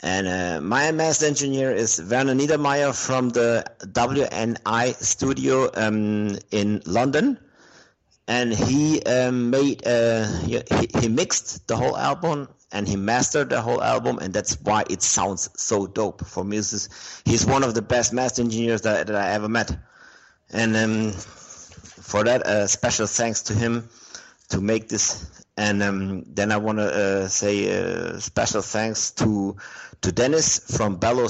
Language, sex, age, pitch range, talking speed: English, male, 50-69, 95-120 Hz, 155 wpm